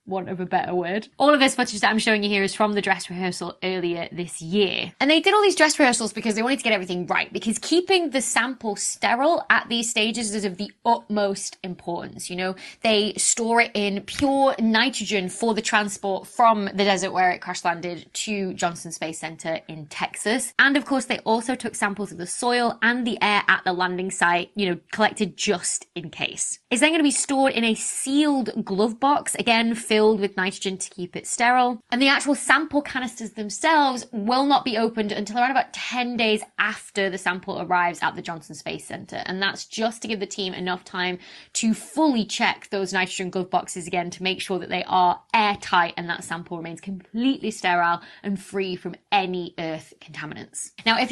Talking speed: 210 wpm